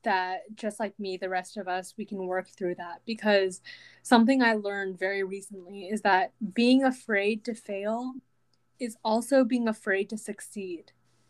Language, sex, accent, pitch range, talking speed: English, female, American, 200-245 Hz, 165 wpm